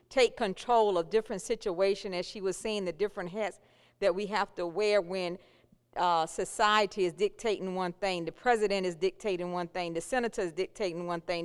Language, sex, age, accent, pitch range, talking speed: English, female, 40-59, American, 195-235 Hz, 190 wpm